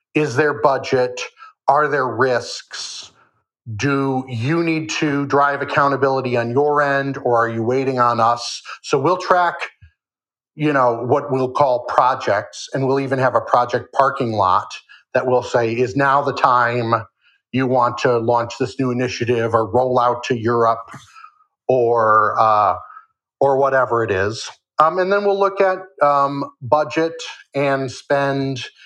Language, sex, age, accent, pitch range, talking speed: English, male, 50-69, American, 120-140 Hz, 150 wpm